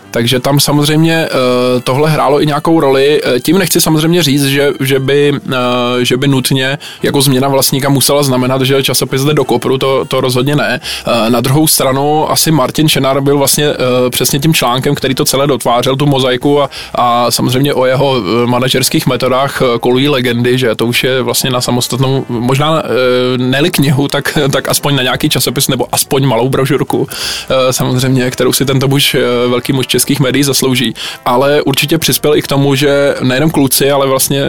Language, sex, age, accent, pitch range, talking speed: Czech, male, 20-39, native, 125-140 Hz, 180 wpm